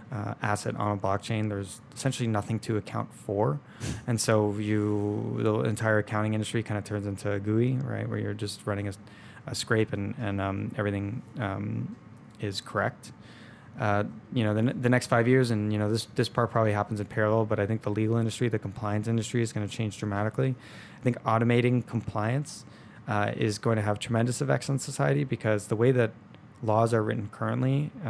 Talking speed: 195 wpm